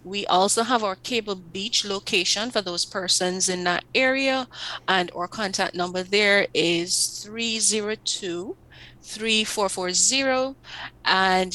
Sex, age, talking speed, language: female, 30-49, 110 wpm, English